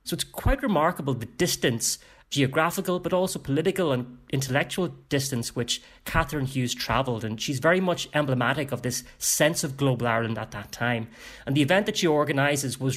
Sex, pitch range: male, 115-140 Hz